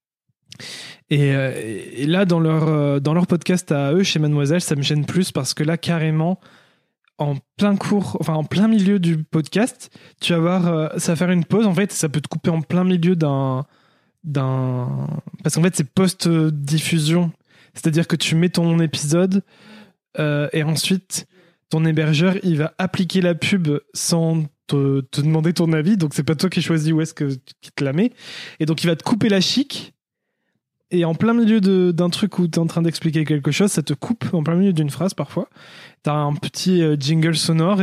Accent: French